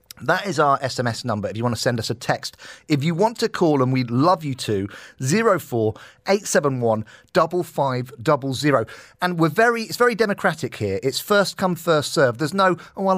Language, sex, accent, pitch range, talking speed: English, male, British, 120-160 Hz, 180 wpm